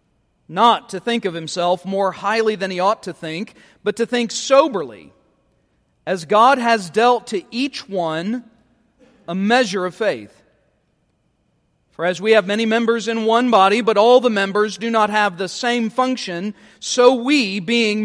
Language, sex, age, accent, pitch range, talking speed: English, male, 40-59, American, 185-245 Hz, 165 wpm